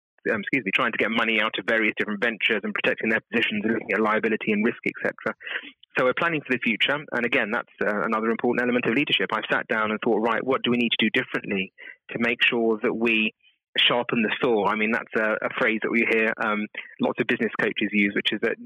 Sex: male